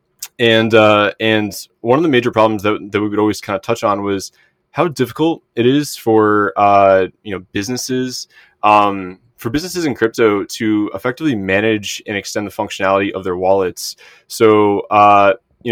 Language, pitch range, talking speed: English, 100-115 Hz, 170 wpm